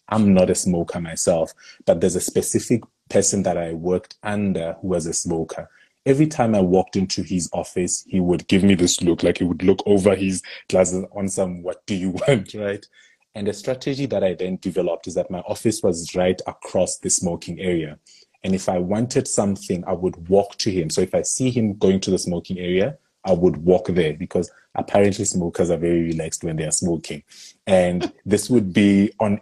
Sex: male